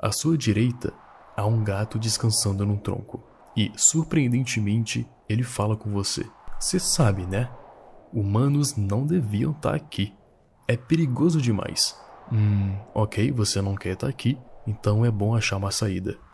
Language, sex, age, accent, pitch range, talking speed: Portuguese, male, 20-39, Brazilian, 105-125 Hz, 145 wpm